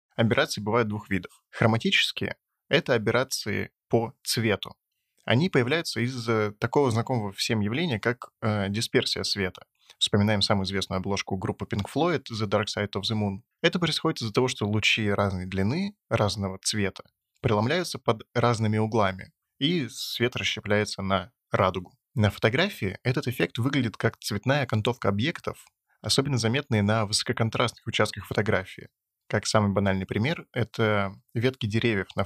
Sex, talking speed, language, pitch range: male, 140 wpm, Russian, 100-120 Hz